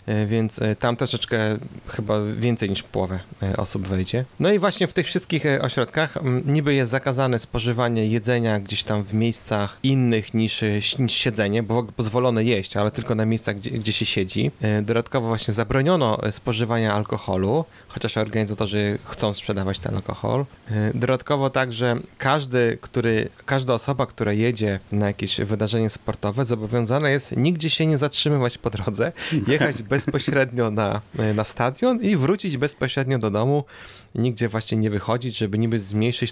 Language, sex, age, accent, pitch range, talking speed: Polish, male, 30-49, native, 105-130 Hz, 145 wpm